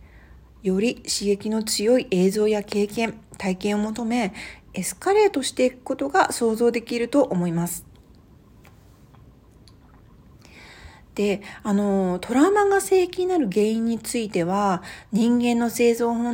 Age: 40-59